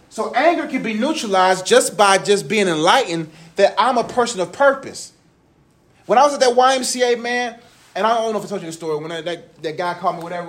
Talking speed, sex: 235 wpm, male